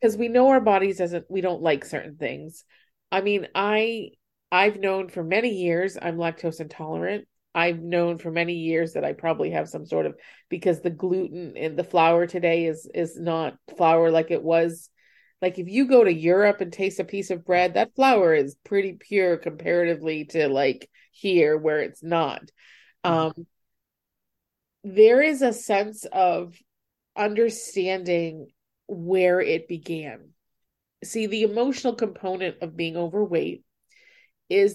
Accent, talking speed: American, 155 wpm